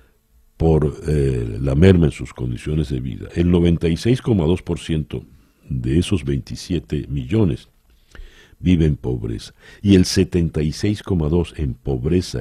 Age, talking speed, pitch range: 60-79, 110 wpm, 75-95 Hz